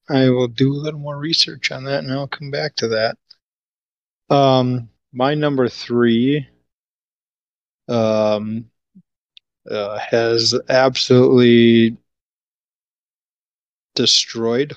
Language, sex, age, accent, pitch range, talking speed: English, male, 20-39, American, 110-130 Hz, 100 wpm